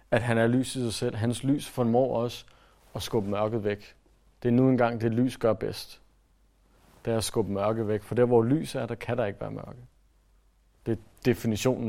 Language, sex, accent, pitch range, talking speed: Danish, male, native, 105-130 Hz, 215 wpm